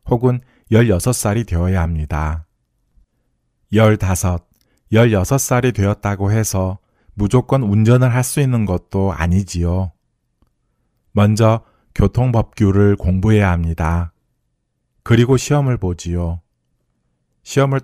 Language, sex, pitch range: Korean, male, 90-115 Hz